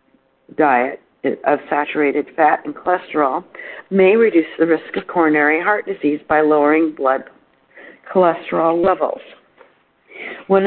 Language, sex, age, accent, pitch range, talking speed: English, female, 50-69, American, 165-225 Hz, 110 wpm